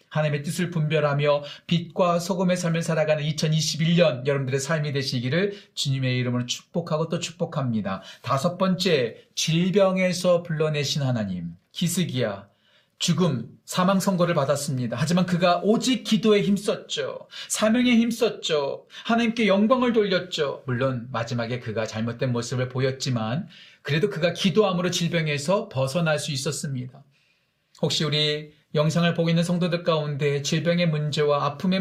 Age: 40-59